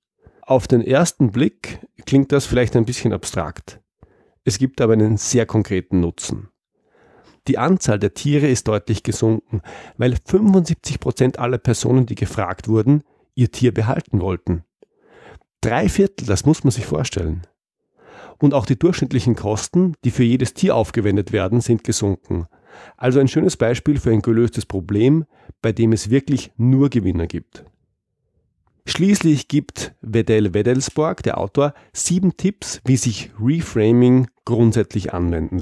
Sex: male